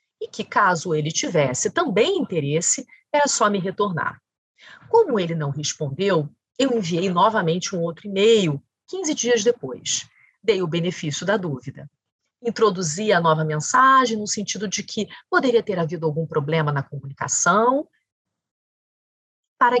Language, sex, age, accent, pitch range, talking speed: Portuguese, female, 40-59, Brazilian, 170-260 Hz, 135 wpm